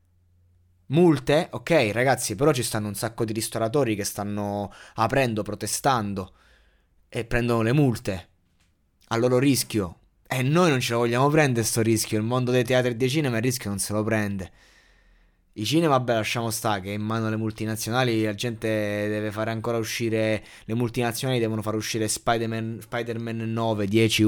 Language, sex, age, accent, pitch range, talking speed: Italian, male, 20-39, native, 105-125 Hz, 170 wpm